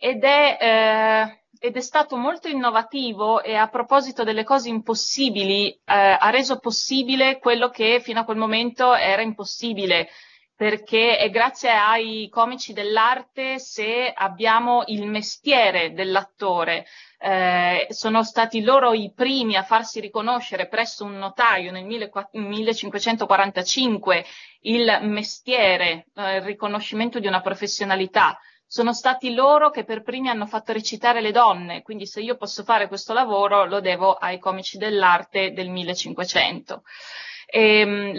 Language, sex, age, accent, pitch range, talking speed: Italian, female, 30-49, native, 200-240 Hz, 125 wpm